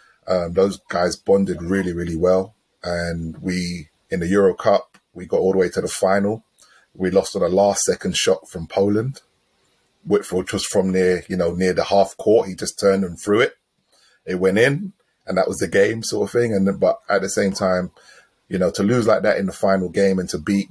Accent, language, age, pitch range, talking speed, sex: British, English, 30-49, 90-100 Hz, 215 wpm, male